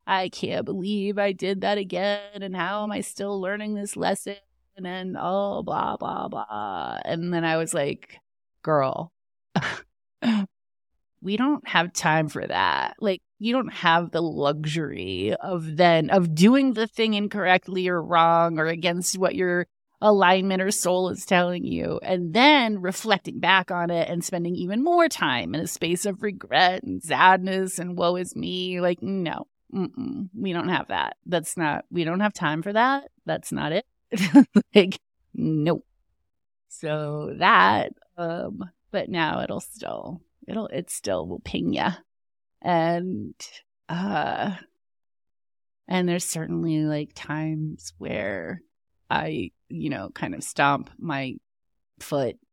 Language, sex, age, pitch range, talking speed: English, female, 30-49, 165-205 Hz, 145 wpm